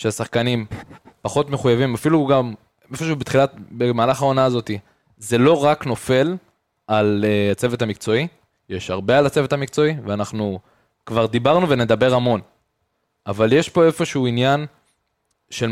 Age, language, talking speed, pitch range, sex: 20-39, Hebrew, 130 wpm, 110-150 Hz, male